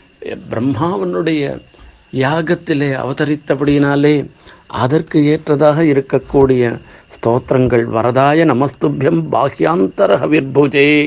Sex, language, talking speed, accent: male, Tamil, 55 wpm, native